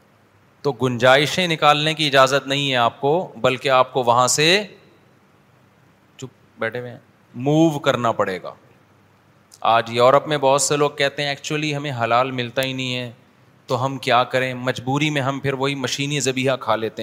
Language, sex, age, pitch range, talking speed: Urdu, male, 30-49, 125-150 Hz, 175 wpm